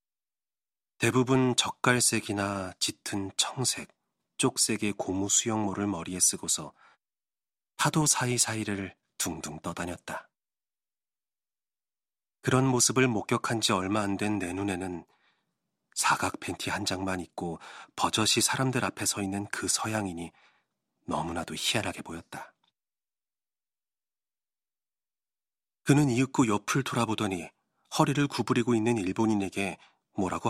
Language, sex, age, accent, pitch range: Korean, male, 40-59, native, 95-125 Hz